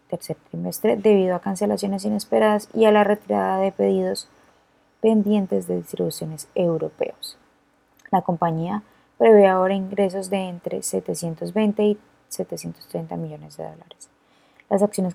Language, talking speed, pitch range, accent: Spanish, 125 wpm, 165-205 Hz, Colombian